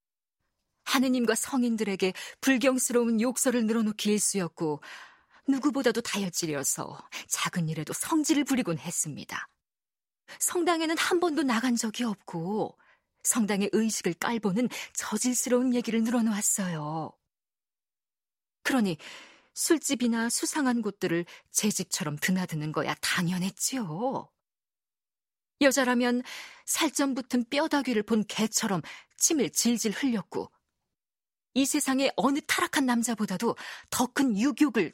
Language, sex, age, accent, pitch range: Korean, female, 40-59, native, 175-255 Hz